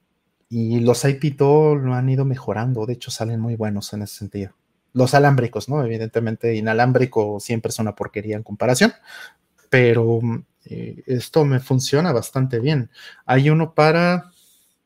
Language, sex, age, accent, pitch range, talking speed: Spanish, male, 30-49, Mexican, 115-150 Hz, 140 wpm